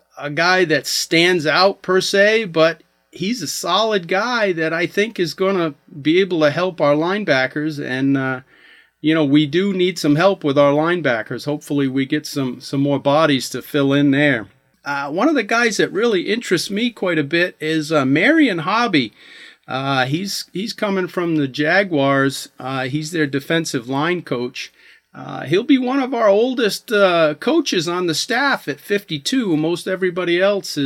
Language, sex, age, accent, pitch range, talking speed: English, male, 40-59, American, 140-185 Hz, 180 wpm